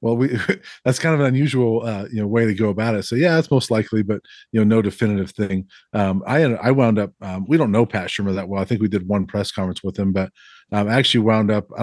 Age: 40-59